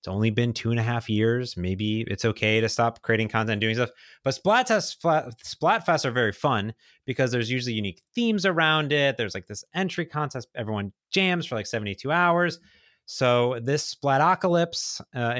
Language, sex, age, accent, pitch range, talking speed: English, male, 30-49, American, 110-145 Hz, 180 wpm